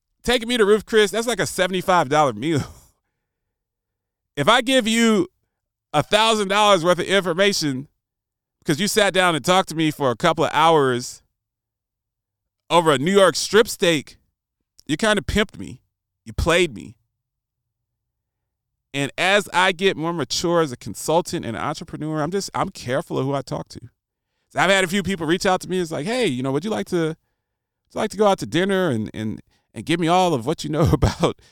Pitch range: 115-180 Hz